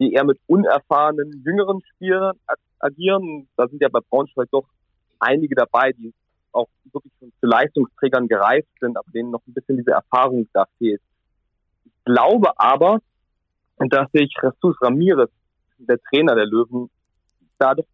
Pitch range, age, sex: 120-155 Hz, 30-49, male